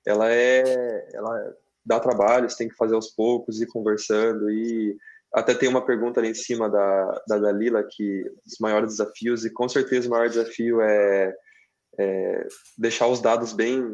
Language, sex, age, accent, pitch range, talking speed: Portuguese, male, 20-39, Brazilian, 105-130 Hz, 170 wpm